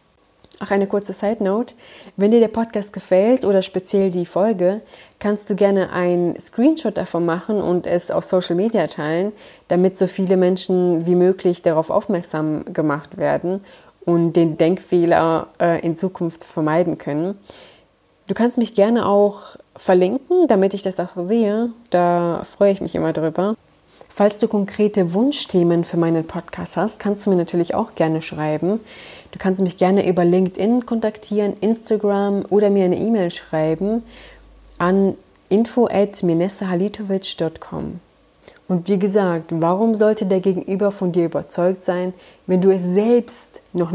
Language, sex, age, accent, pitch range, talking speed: German, female, 20-39, German, 175-205 Hz, 145 wpm